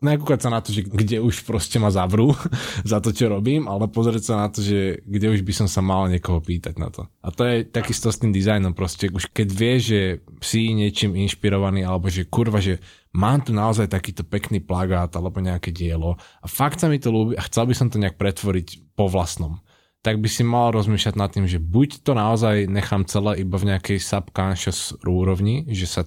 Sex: male